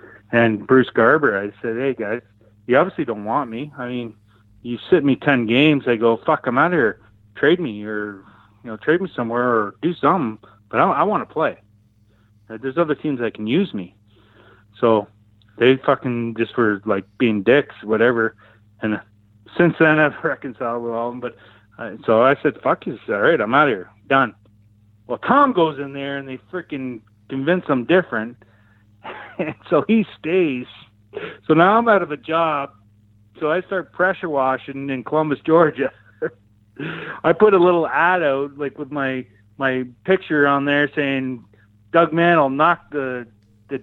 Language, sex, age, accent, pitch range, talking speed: English, male, 30-49, American, 105-145 Hz, 185 wpm